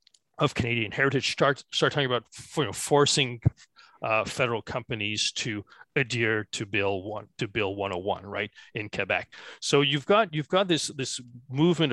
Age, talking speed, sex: 30-49, 180 wpm, male